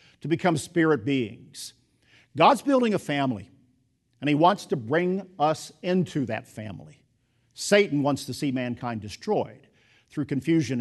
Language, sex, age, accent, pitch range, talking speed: English, male, 50-69, American, 125-155 Hz, 140 wpm